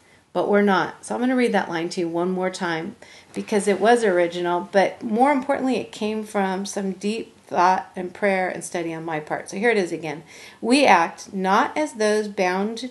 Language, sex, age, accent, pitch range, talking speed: English, female, 40-59, American, 180-215 Hz, 215 wpm